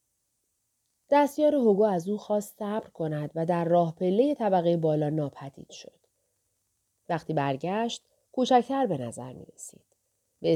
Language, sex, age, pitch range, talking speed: Persian, female, 30-49, 160-230 Hz, 130 wpm